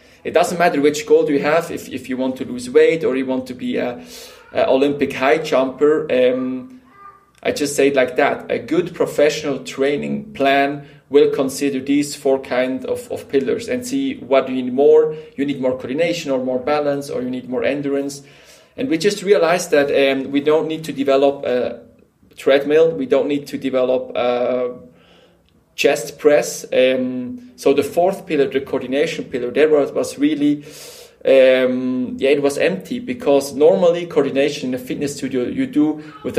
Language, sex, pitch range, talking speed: Swedish, male, 130-160 Hz, 185 wpm